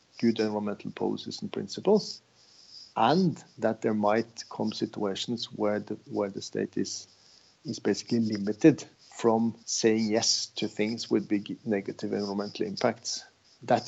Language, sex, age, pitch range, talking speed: English, male, 50-69, 105-120 Hz, 130 wpm